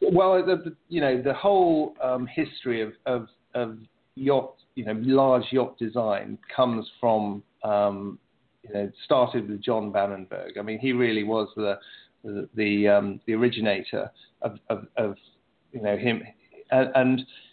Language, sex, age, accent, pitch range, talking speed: English, male, 40-59, British, 110-130 Hz, 155 wpm